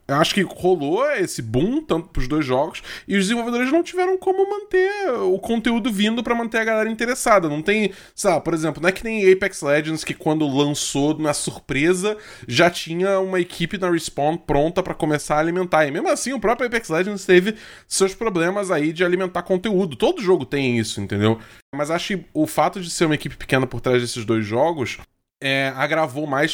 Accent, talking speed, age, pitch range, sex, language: Brazilian, 200 wpm, 20-39, 135-195 Hz, male, Portuguese